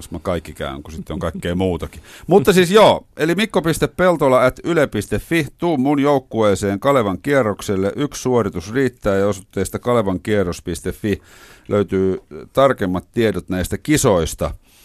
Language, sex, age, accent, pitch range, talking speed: Finnish, male, 50-69, native, 90-125 Hz, 115 wpm